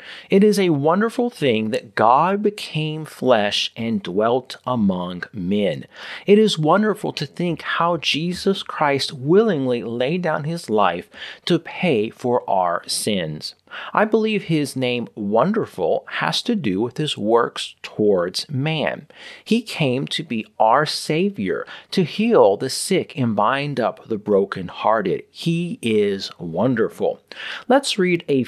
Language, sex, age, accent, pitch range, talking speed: English, male, 40-59, American, 125-195 Hz, 135 wpm